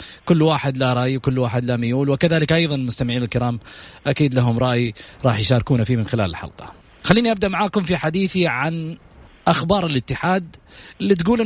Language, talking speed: Arabic, 155 wpm